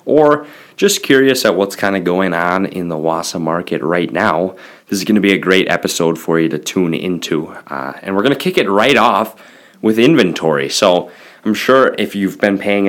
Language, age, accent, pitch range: English, 20-39, American, 85-105 Hz